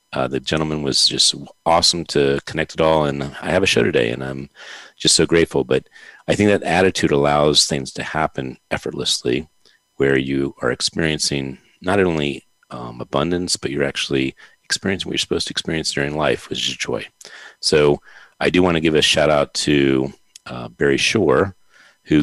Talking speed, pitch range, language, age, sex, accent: 180 wpm, 70-85 Hz, English, 40-59, male, American